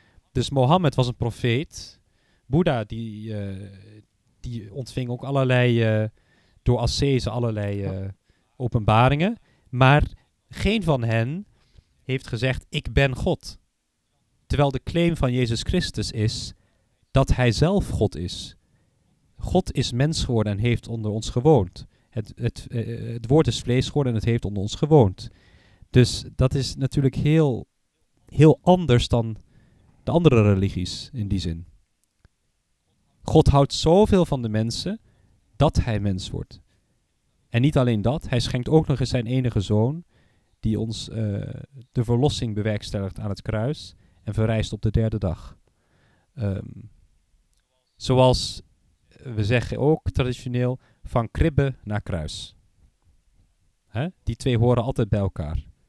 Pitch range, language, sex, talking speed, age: 100-130 Hz, Dutch, male, 135 wpm, 40-59